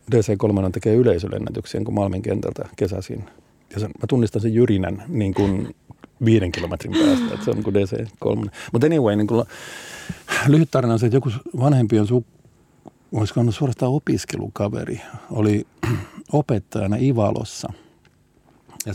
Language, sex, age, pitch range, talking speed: Finnish, male, 50-69, 100-125 Hz, 135 wpm